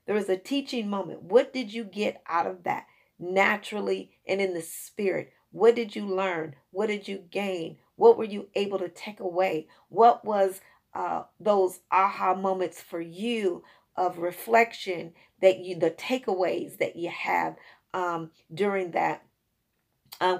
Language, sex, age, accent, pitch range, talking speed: English, female, 40-59, American, 180-210 Hz, 155 wpm